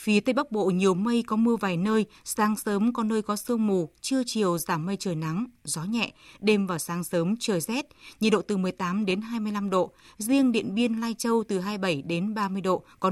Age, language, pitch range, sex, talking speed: 20-39, Vietnamese, 185-225 Hz, female, 225 wpm